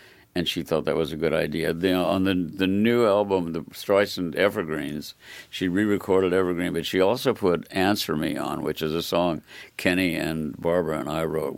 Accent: American